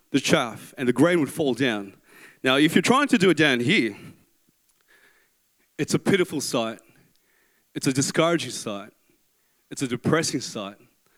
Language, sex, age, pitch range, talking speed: English, male, 20-39, 125-175 Hz, 155 wpm